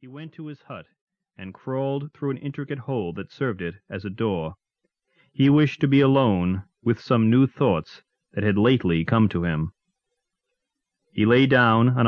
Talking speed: 180 wpm